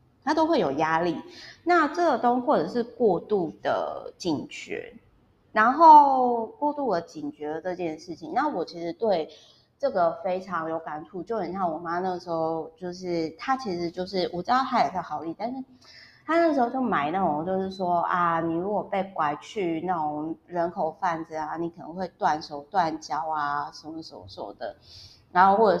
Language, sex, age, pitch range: Chinese, female, 30-49, 160-205 Hz